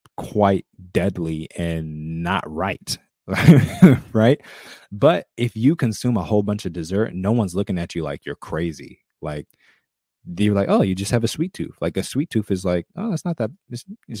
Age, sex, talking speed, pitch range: 20-39, male, 190 wpm, 85-105 Hz